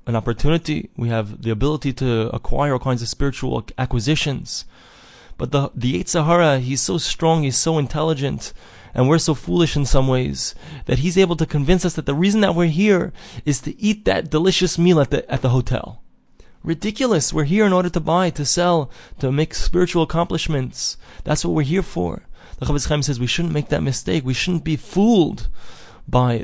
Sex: male